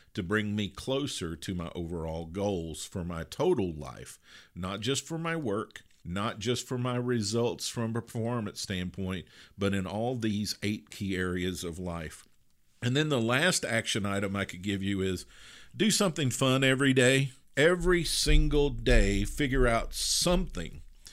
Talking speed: 160 wpm